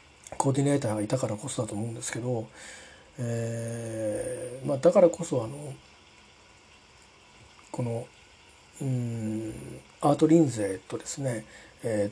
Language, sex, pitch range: Japanese, male, 110-145 Hz